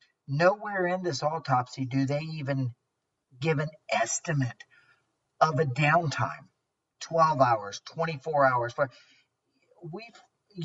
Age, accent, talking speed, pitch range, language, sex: 50-69, American, 100 wpm, 140-170 Hz, English, male